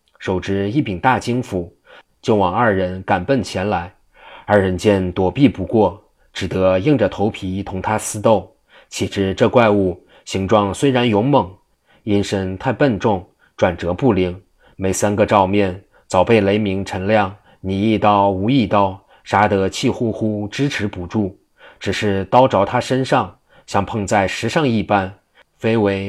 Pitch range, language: 95-110 Hz, Chinese